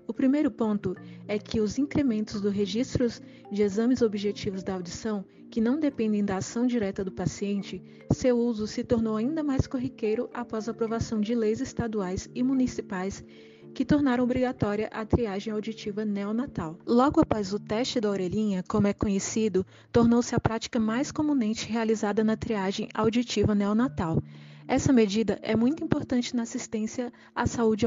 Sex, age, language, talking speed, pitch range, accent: female, 20-39, Portuguese, 155 wpm, 205-245 Hz, Brazilian